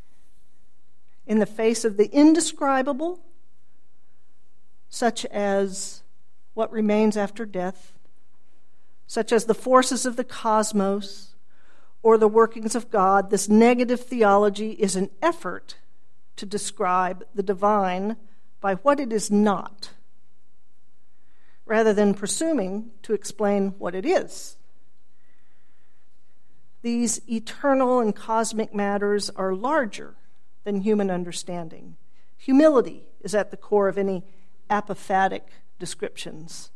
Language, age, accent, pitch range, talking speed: English, 50-69, American, 195-235 Hz, 110 wpm